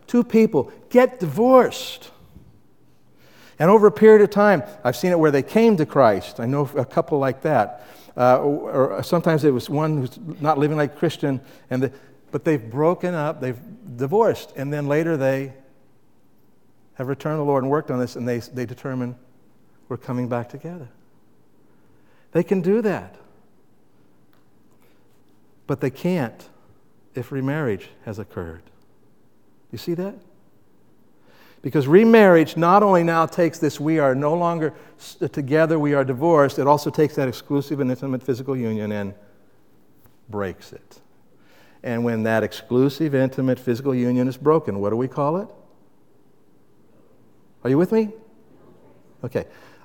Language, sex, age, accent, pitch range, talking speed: English, male, 60-79, American, 125-160 Hz, 150 wpm